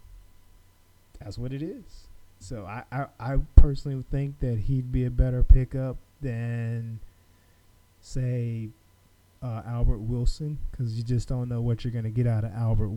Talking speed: 155 wpm